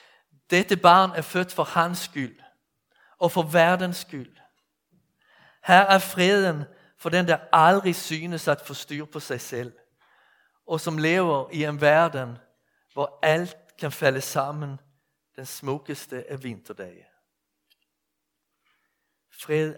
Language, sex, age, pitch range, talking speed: Danish, male, 60-79, 130-165 Hz, 125 wpm